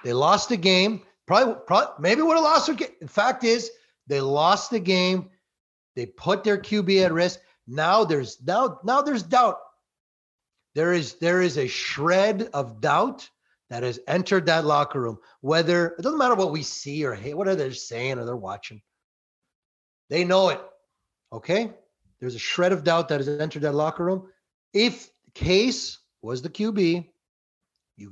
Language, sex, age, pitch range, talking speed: English, male, 30-49, 150-215 Hz, 175 wpm